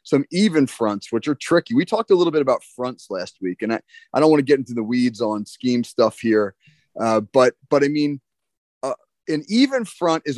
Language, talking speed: English, 225 wpm